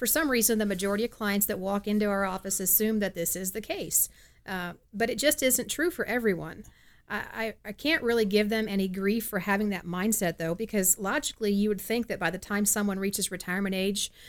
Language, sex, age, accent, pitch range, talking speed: English, female, 40-59, American, 190-225 Hz, 225 wpm